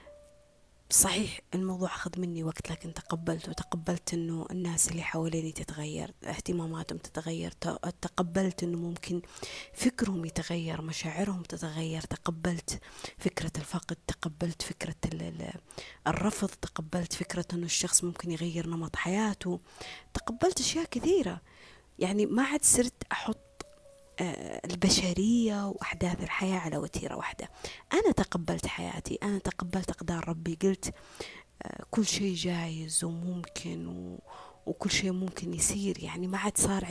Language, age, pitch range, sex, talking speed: Arabic, 20-39, 170-205 Hz, female, 115 wpm